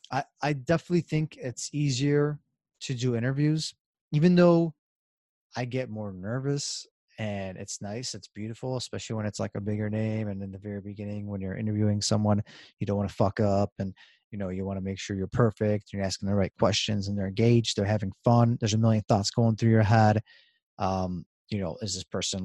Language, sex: English, male